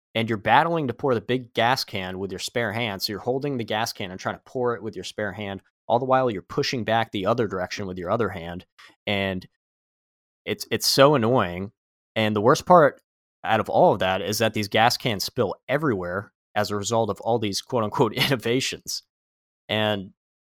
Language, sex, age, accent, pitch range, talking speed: English, male, 30-49, American, 95-120 Hz, 210 wpm